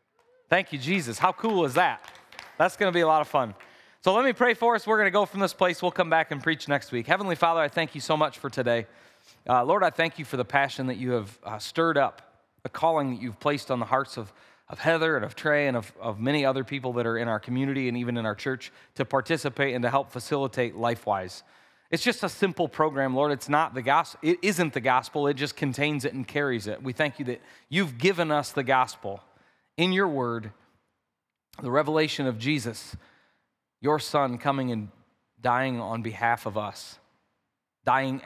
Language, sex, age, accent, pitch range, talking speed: English, male, 30-49, American, 120-155 Hz, 215 wpm